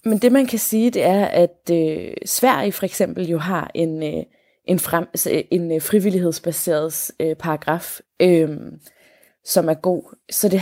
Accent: native